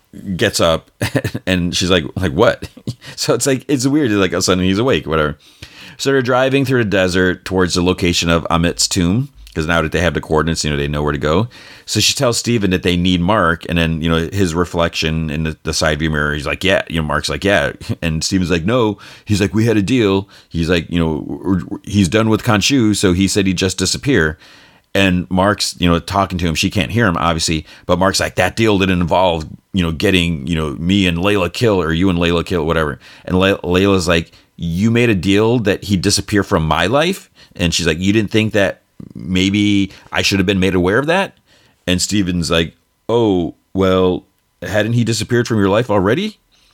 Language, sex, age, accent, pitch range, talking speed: English, male, 30-49, American, 85-105 Hz, 220 wpm